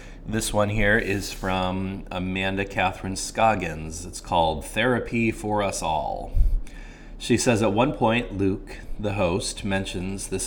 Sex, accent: male, American